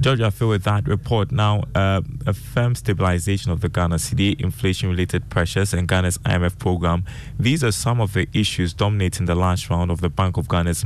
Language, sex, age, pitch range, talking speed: English, male, 20-39, 90-110 Hz, 200 wpm